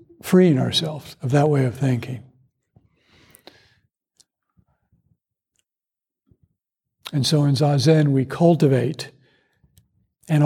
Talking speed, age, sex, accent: 80 wpm, 60-79, male, American